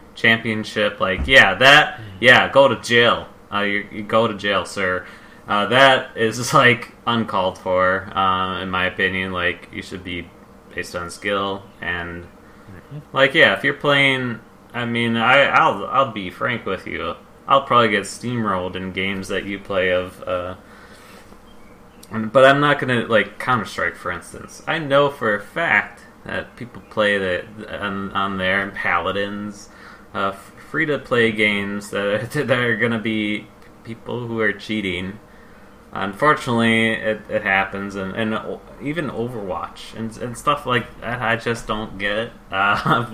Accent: American